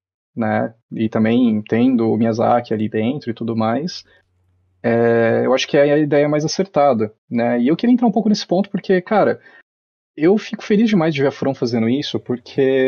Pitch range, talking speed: 115-145 Hz, 195 wpm